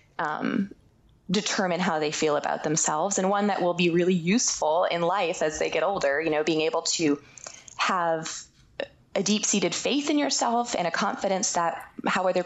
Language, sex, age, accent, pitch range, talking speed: English, female, 20-39, American, 165-205 Hz, 185 wpm